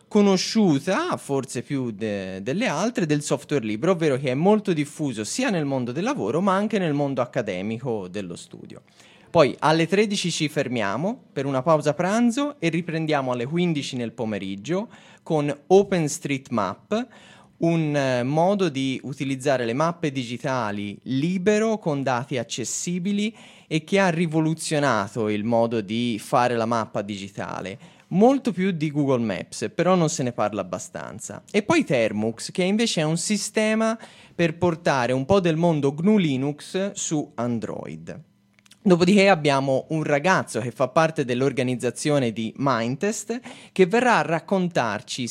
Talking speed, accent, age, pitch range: 145 wpm, native, 20-39, 120-190 Hz